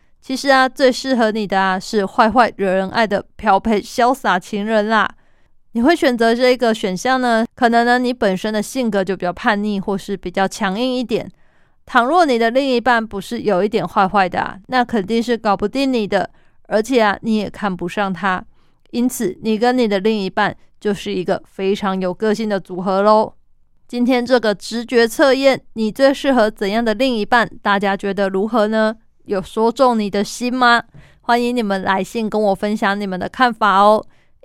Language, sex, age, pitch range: Chinese, female, 20-39, 200-240 Hz